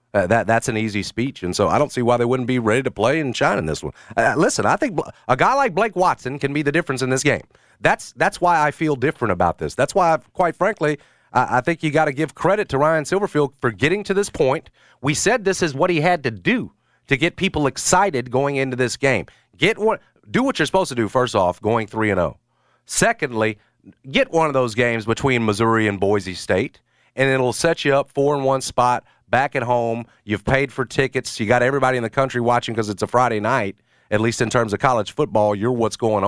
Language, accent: English, American